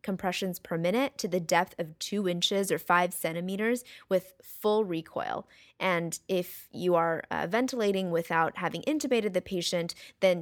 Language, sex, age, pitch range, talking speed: English, female, 20-39, 175-220 Hz, 155 wpm